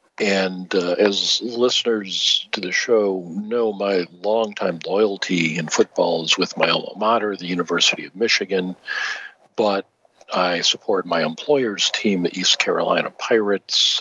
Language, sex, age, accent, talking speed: English, male, 50-69, American, 135 wpm